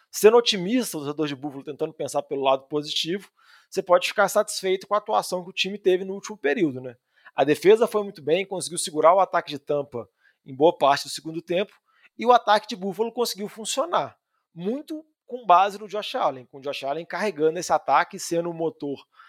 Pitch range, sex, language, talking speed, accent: 150-205 Hz, male, Portuguese, 205 wpm, Brazilian